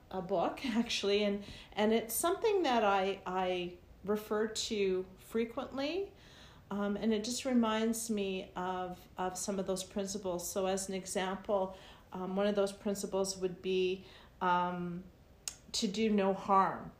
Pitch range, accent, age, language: 180-210 Hz, American, 40-59, English